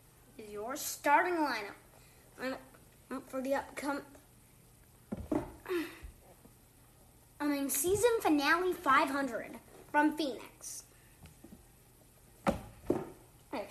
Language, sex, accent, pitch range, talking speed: English, female, American, 265-320 Hz, 70 wpm